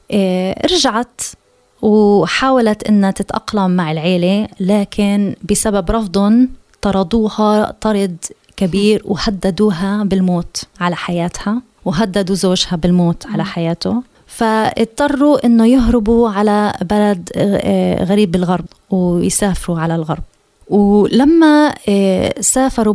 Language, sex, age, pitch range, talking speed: Arabic, female, 20-39, 190-235 Hz, 85 wpm